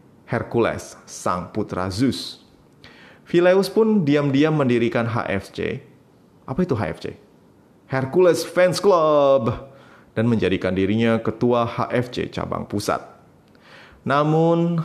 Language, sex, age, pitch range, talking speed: Indonesian, male, 20-39, 100-130 Hz, 95 wpm